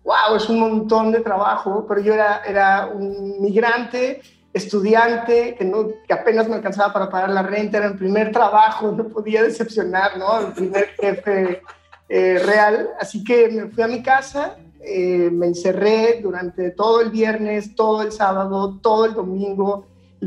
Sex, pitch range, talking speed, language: male, 195-235 Hz, 170 wpm, Spanish